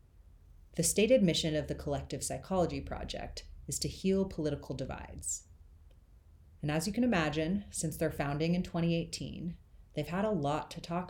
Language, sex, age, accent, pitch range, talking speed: English, female, 30-49, American, 105-175 Hz, 155 wpm